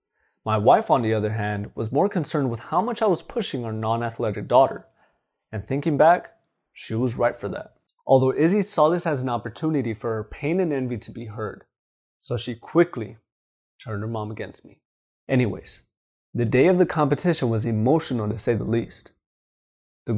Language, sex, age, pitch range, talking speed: English, male, 20-39, 115-160 Hz, 185 wpm